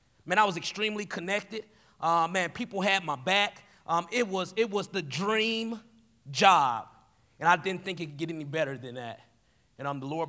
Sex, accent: male, American